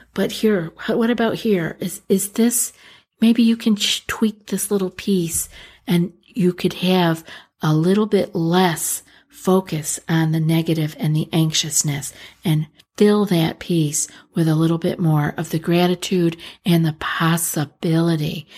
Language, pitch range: English, 160-200 Hz